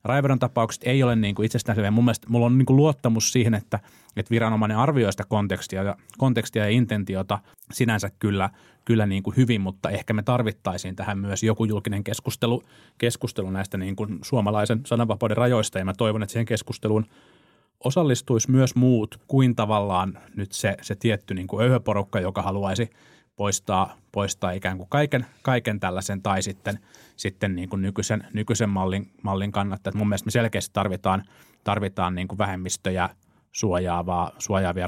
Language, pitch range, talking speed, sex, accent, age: Finnish, 95-115 Hz, 160 wpm, male, native, 30-49